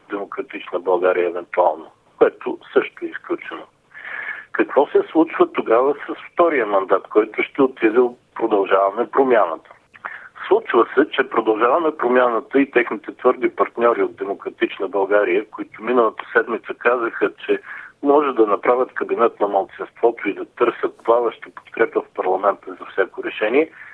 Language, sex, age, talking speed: Bulgarian, male, 60-79, 135 wpm